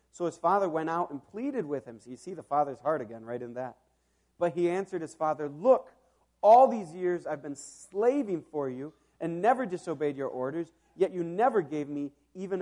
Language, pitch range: English, 105-170 Hz